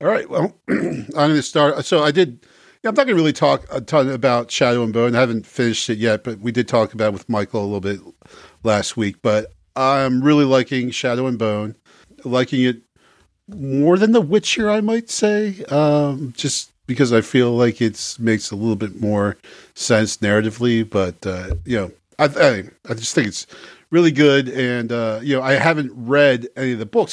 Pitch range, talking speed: 110-140 Hz, 205 wpm